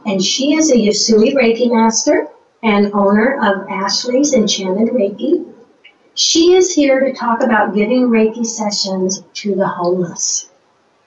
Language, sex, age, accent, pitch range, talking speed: English, female, 50-69, American, 195-235 Hz, 135 wpm